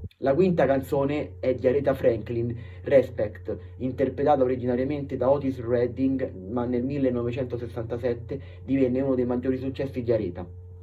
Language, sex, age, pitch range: Italian, male, 30-49, 95-135 Hz